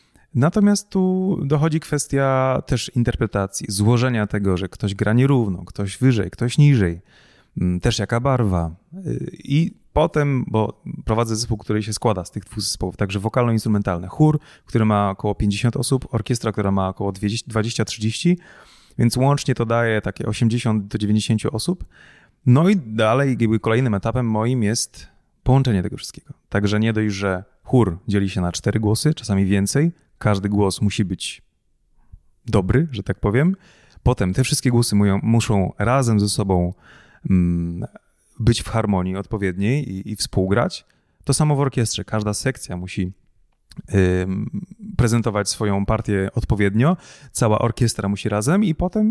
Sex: male